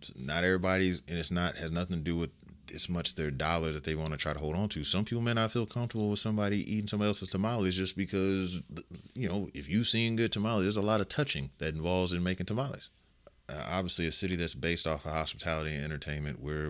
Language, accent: English, American